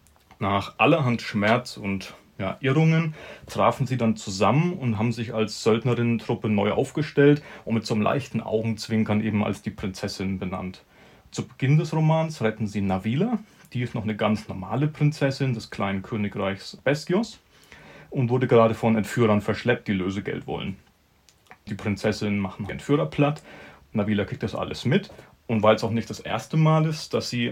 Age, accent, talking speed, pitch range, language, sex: 30-49, German, 170 wpm, 105-140 Hz, German, male